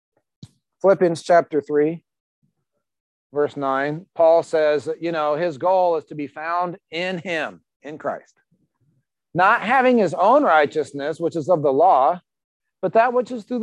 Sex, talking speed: male, 150 wpm